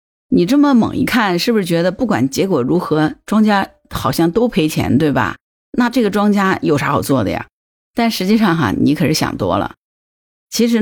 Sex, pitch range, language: female, 155-215 Hz, Chinese